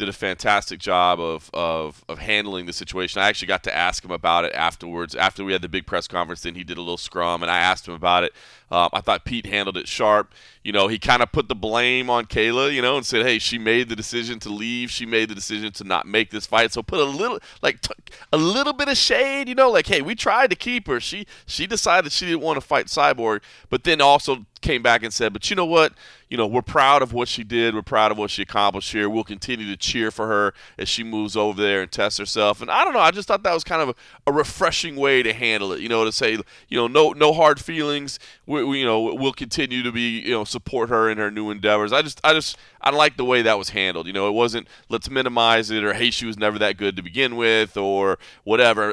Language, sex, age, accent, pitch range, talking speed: English, male, 30-49, American, 100-125 Hz, 265 wpm